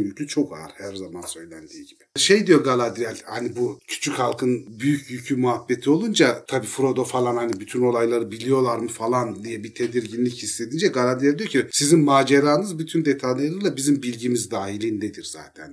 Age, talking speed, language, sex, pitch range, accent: 40-59, 160 wpm, Turkish, male, 120-150 Hz, native